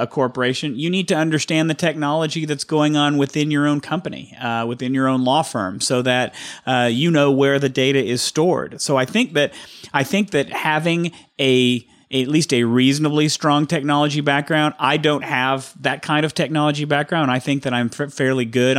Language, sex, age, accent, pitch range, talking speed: English, male, 40-59, American, 125-150 Hz, 200 wpm